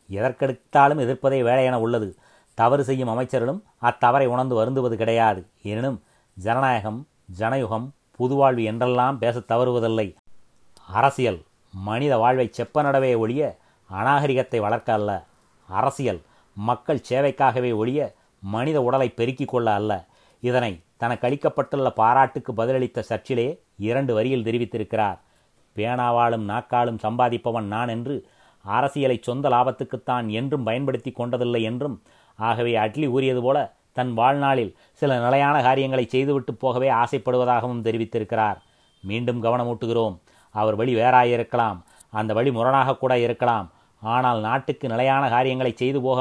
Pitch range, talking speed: 110-130 Hz, 110 wpm